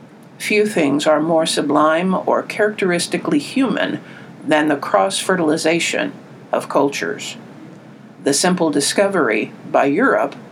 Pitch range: 160-210 Hz